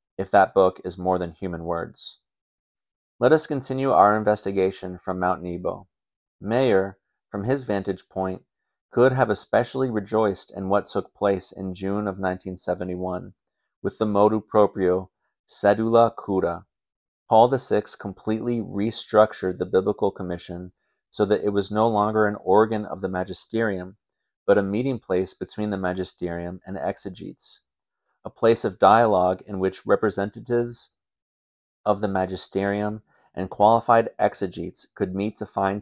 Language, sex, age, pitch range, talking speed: English, male, 40-59, 95-110 Hz, 140 wpm